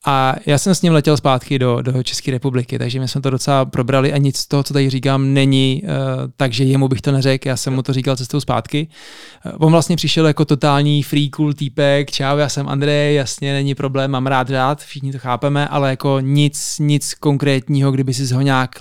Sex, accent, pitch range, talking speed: male, native, 130-145 Hz, 215 wpm